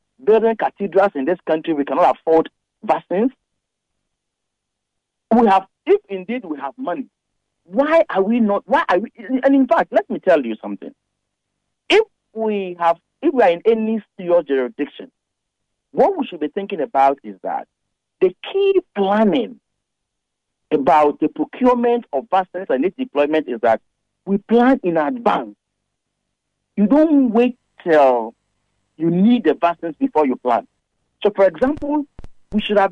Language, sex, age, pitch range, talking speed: English, male, 50-69, 175-265 Hz, 150 wpm